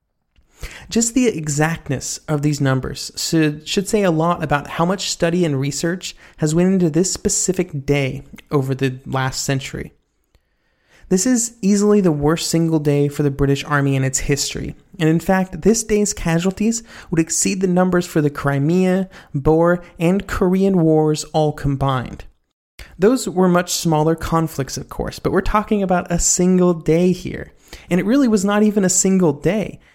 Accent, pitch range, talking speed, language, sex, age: American, 145-185 Hz, 170 wpm, English, male, 30-49